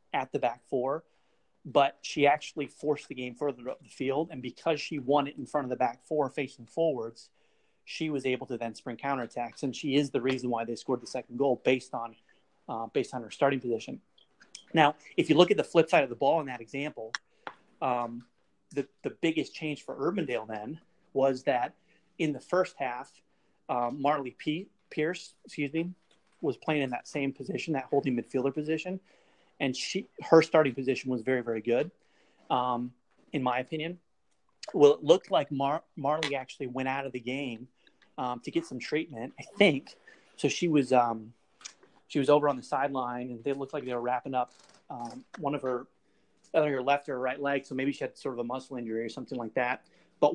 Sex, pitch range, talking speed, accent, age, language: male, 125-150 Hz, 205 wpm, American, 30-49, English